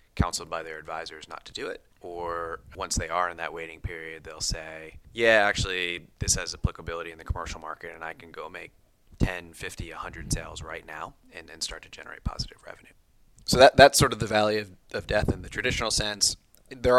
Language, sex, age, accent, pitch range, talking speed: English, male, 30-49, American, 85-105 Hz, 210 wpm